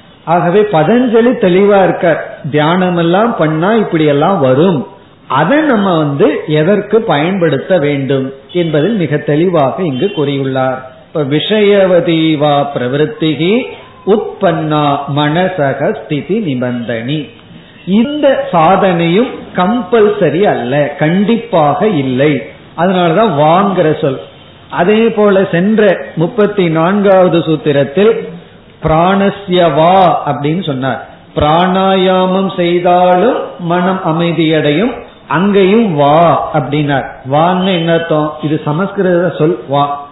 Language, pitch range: Tamil, 150-195 Hz